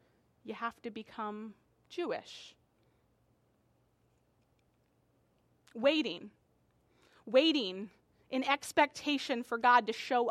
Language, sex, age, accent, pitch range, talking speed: English, female, 30-49, American, 245-315 Hz, 75 wpm